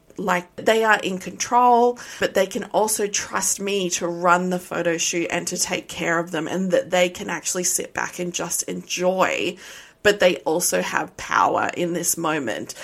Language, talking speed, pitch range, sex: English, 185 wpm, 175-235 Hz, female